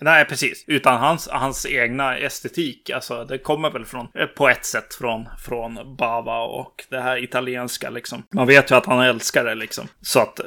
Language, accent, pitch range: Swedish, native, 125-150 Hz